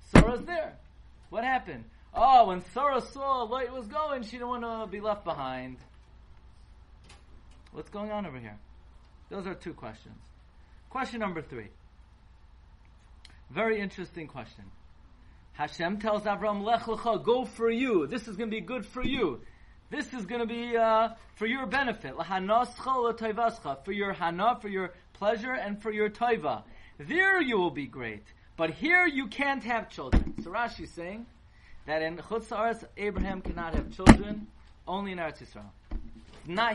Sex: male